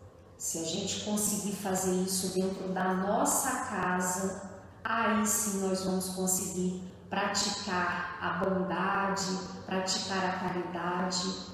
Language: Portuguese